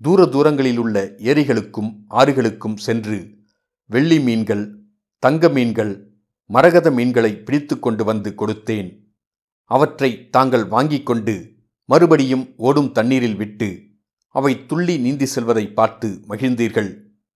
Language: Tamil